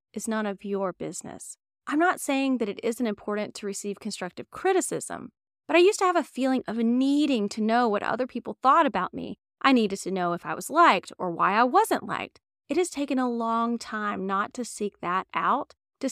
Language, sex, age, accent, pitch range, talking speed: English, female, 20-39, American, 210-275 Hz, 215 wpm